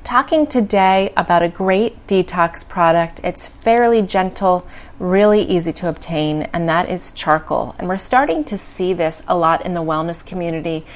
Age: 30-49